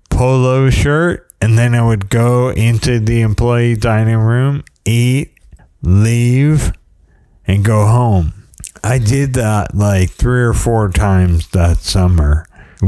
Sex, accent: male, American